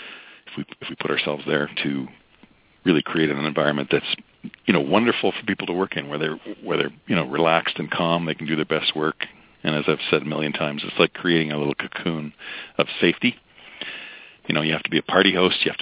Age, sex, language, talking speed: 50-69, male, English, 235 wpm